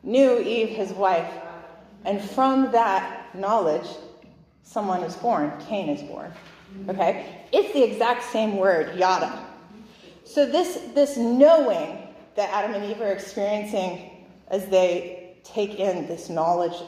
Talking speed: 130 wpm